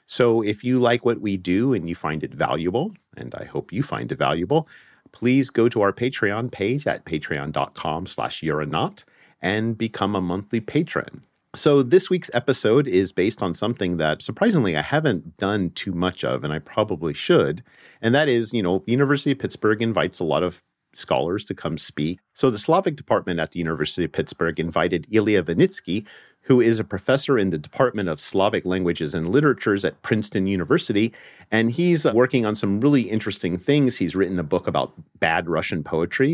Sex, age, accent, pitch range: male, 40-59, American, 90-120 Hz